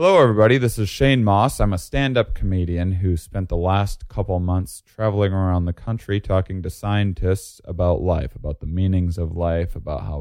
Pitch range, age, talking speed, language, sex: 85-105 Hz, 20-39, 190 wpm, English, male